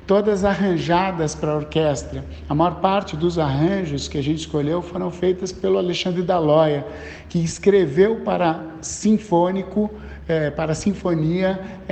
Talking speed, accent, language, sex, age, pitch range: 130 wpm, Brazilian, Portuguese, male, 50-69, 150-190 Hz